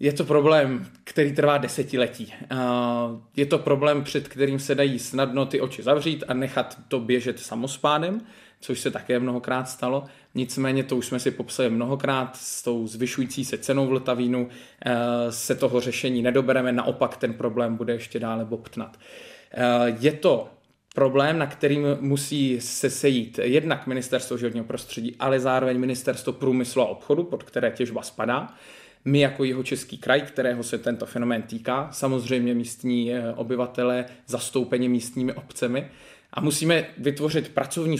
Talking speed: 150 wpm